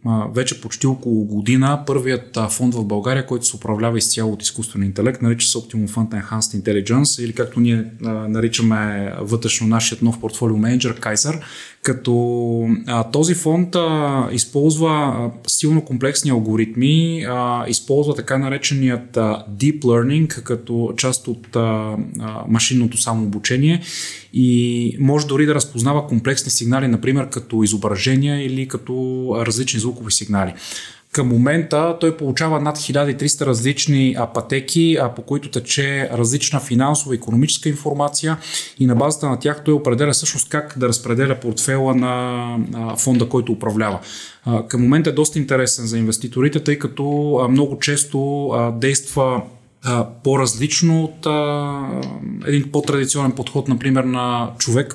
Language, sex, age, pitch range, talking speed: Bulgarian, male, 20-39, 115-140 Hz, 125 wpm